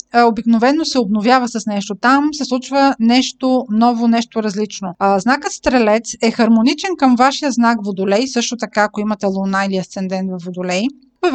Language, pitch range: Bulgarian, 215-260 Hz